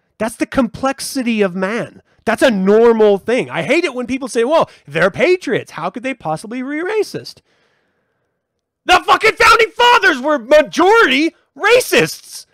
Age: 30-49